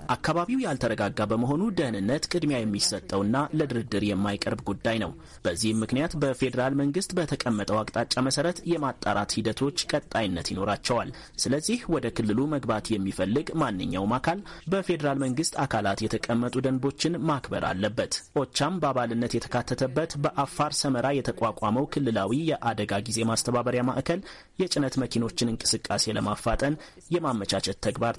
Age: 30-49